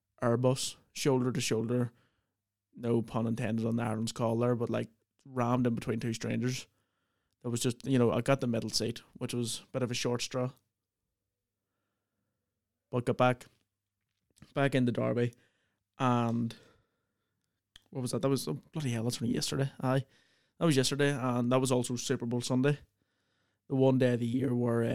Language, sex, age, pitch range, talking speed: English, male, 20-39, 105-125 Hz, 175 wpm